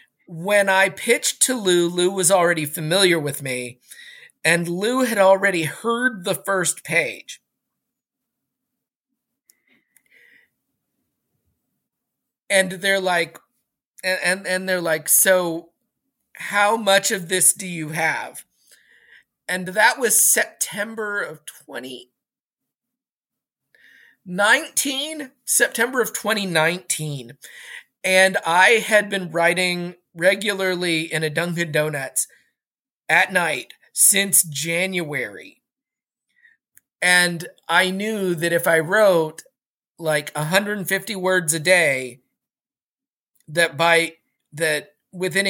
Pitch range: 160-205 Hz